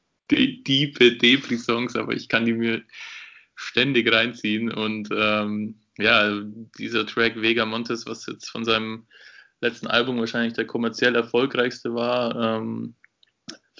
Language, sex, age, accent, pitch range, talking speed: German, male, 20-39, German, 110-125 Hz, 125 wpm